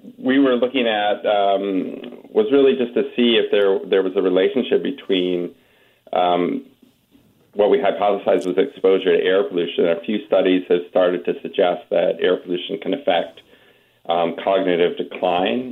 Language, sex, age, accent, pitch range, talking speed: English, male, 40-59, American, 90-135 Hz, 155 wpm